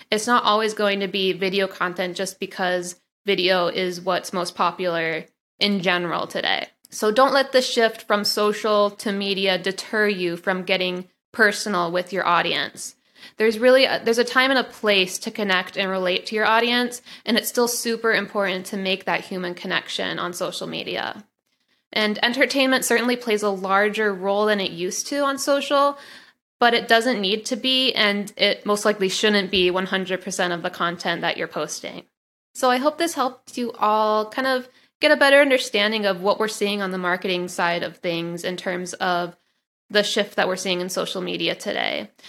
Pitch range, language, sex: 185-230 Hz, English, female